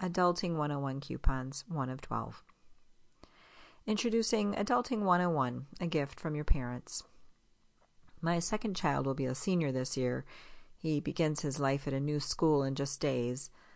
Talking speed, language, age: 150 wpm, English, 40-59